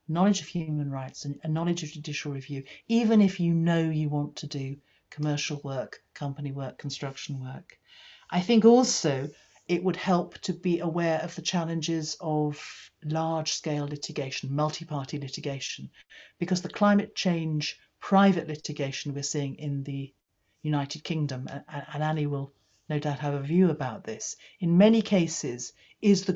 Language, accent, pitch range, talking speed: English, British, 145-180 Hz, 155 wpm